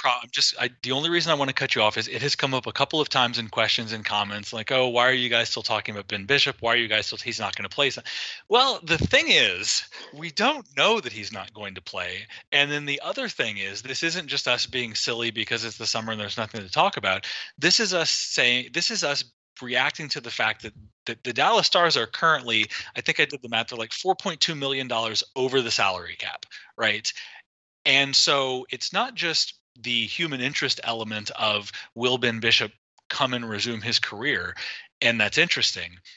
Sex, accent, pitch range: male, American, 110-130 Hz